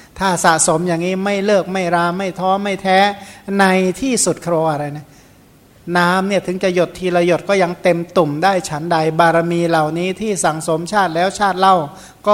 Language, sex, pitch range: Thai, male, 160-190 Hz